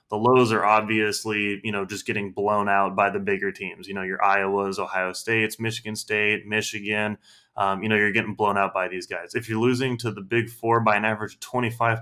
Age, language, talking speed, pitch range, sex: 20-39, English, 225 wpm, 105-125 Hz, male